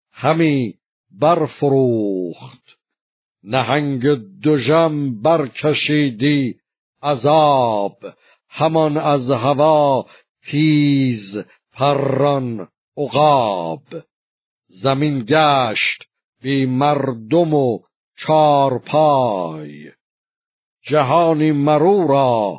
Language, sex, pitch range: Persian, male, 120-150 Hz